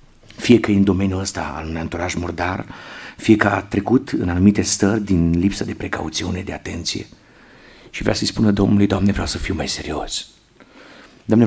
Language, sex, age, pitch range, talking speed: Romanian, male, 50-69, 85-105 Hz, 180 wpm